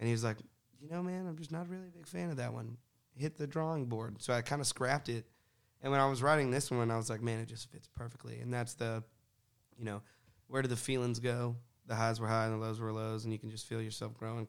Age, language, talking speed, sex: 20-39, English, 280 wpm, male